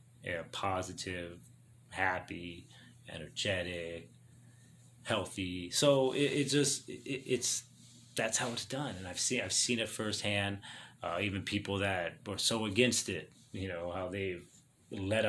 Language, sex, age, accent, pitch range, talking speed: English, male, 30-49, American, 105-125 Hz, 135 wpm